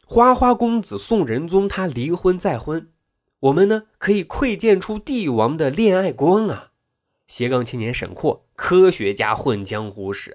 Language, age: Chinese, 20-39